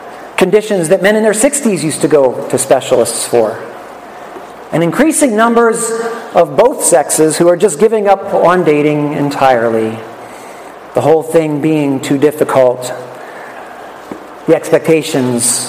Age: 40-59